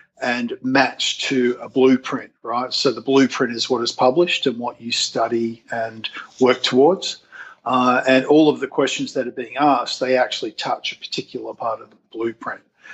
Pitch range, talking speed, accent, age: 120-145 Hz, 180 wpm, Australian, 50-69